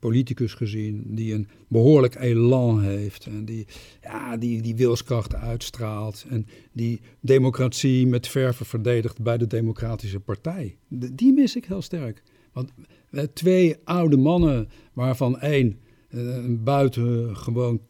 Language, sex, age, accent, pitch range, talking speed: Dutch, male, 50-69, Dutch, 110-135 Hz, 125 wpm